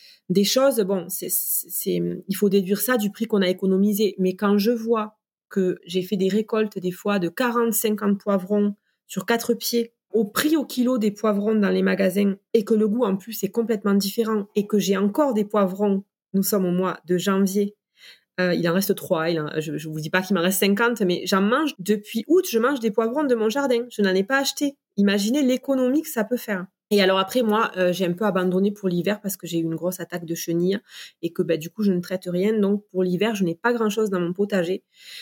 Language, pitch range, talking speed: French, 185-225 Hz, 235 wpm